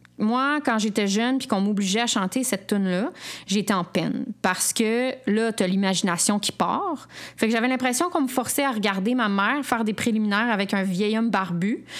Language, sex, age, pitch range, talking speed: French, female, 30-49, 185-245 Hz, 210 wpm